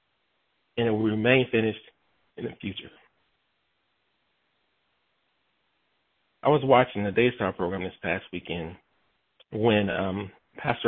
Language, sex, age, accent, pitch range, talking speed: English, male, 40-59, American, 100-120 Hz, 110 wpm